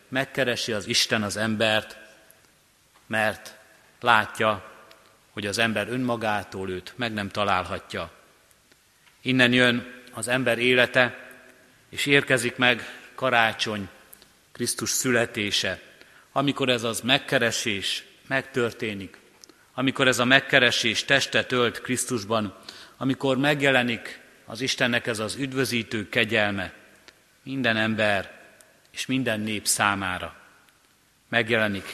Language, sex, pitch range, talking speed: Hungarian, male, 110-130 Hz, 100 wpm